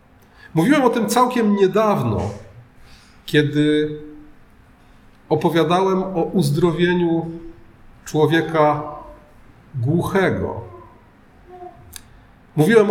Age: 40-59